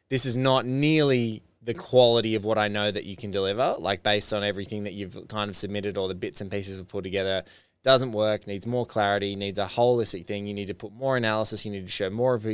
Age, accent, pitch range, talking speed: 20-39, Australian, 105-130 Hz, 255 wpm